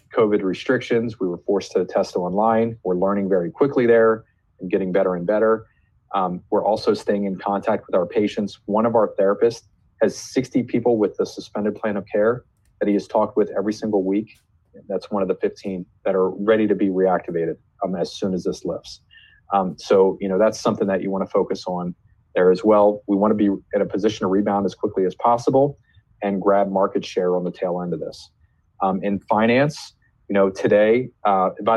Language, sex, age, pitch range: English, male, 30-49, 95-105 Hz